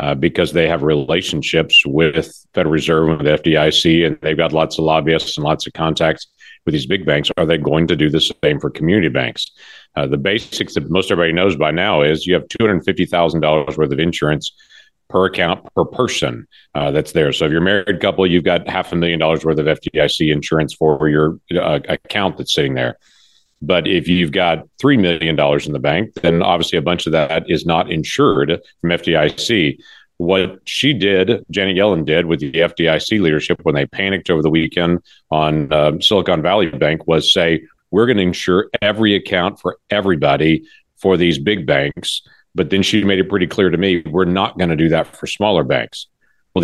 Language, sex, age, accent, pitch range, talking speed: English, male, 50-69, American, 80-90 Hz, 200 wpm